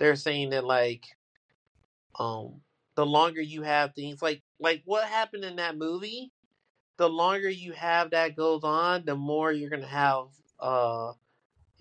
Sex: male